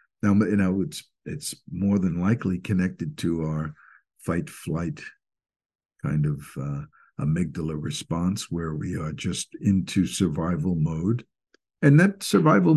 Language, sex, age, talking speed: English, male, 60-79, 130 wpm